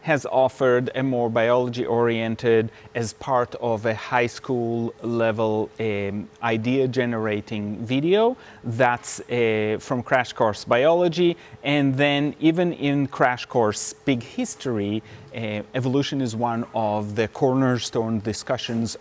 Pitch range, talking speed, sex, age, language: 115-150 Hz, 125 wpm, male, 30-49, English